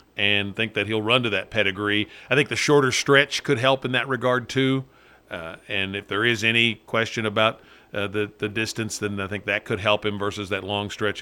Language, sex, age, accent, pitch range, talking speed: English, male, 40-59, American, 100-120 Hz, 225 wpm